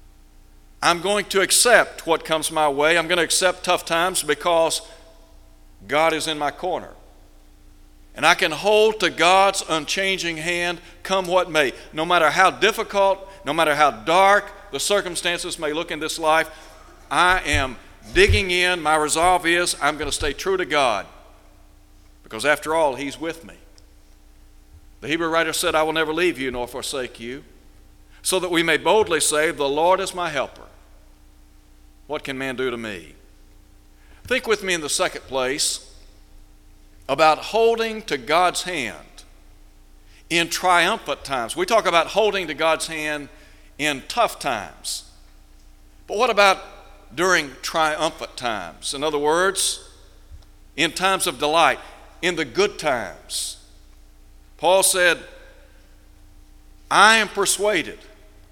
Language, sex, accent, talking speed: English, male, American, 145 wpm